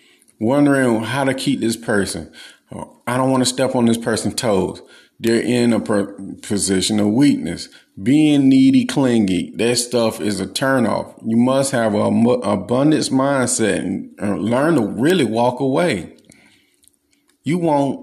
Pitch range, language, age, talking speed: 105-135 Hz, English, 30-49, 150 wpm